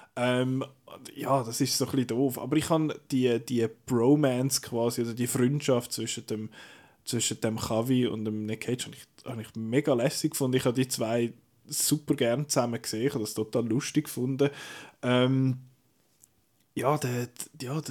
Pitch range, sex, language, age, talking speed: 120-145 Hz, male, German, 20-39, 170 wpm